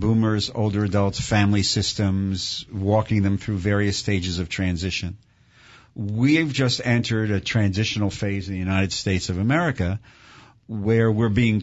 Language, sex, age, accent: English, male, 50-69, American